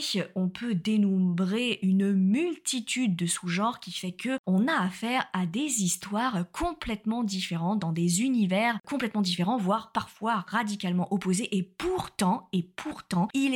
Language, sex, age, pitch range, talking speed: French, female, 20-39, 180-225 Hz, 135 wpm